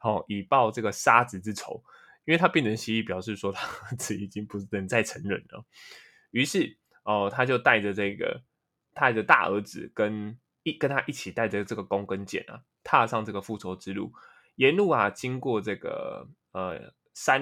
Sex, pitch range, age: male, 100-125 Hz, 20-39